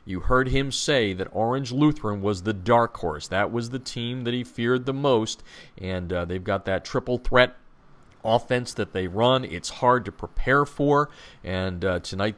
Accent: American